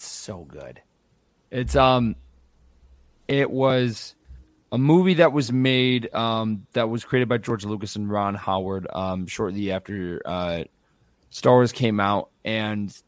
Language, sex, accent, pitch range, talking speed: English, male, American, 100-125 Hz, 140 wpm